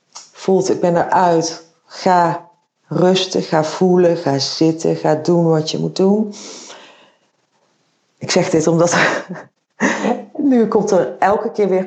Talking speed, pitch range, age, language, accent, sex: 130 wpm, 165-185 Hz, 40-59, Dutch, Dutch, female